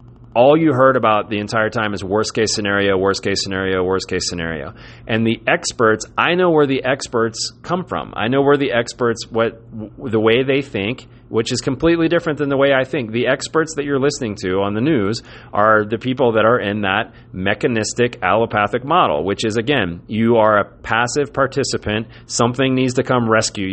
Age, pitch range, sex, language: 30-49, 105-130 Hz, male, English